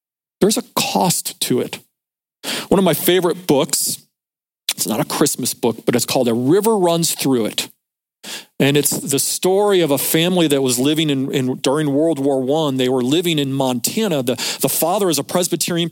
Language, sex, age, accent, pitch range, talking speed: English, male, 40-59, American, 135-180 Hz, 190 wpm